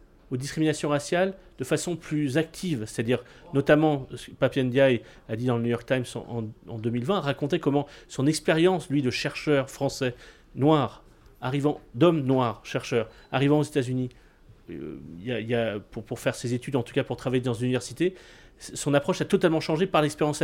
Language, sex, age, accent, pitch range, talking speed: French, male, 30-49, French, 125-160 Hz, 190 wpm